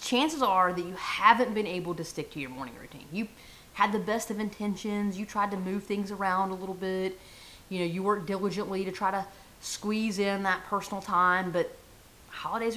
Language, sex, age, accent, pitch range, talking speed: English, female, 30-49, American, 185-230 Hz, 200 wpm